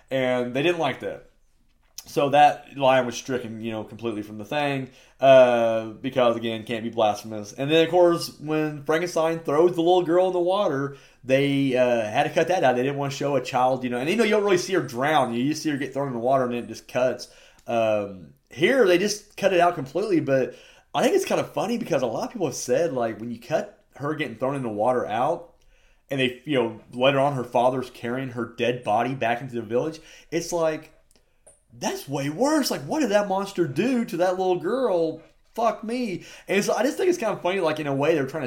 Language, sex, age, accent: English, male, 30-49, American